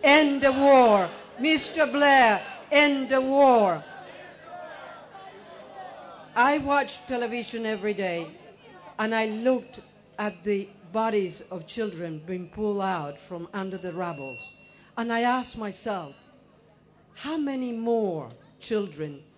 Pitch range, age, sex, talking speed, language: 185-230 Hz, 60-79, female, 110 wpm, English